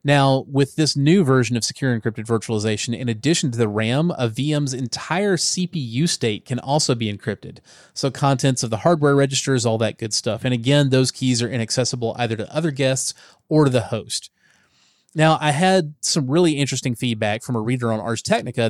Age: 30-49